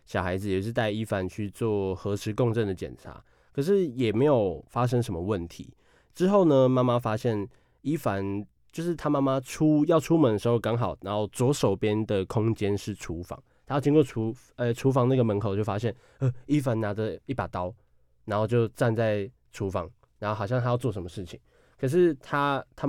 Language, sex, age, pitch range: Chinese, male, 20-39, 100-125 Hz